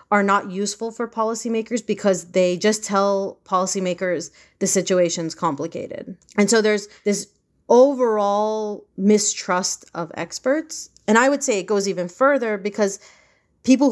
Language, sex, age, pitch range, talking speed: English, female, 30-49, 180-220 Hz, 135 wpm